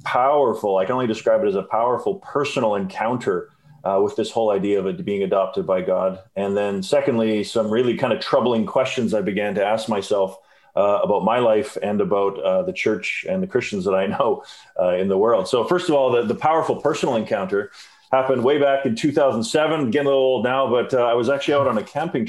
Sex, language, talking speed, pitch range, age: male, English, 225 wpm, 105-145 Hz, 40-59